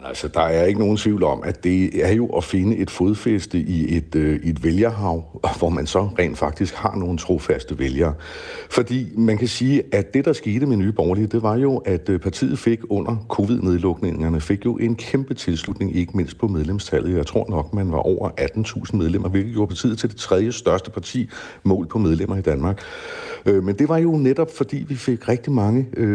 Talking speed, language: 200 wpm, Danish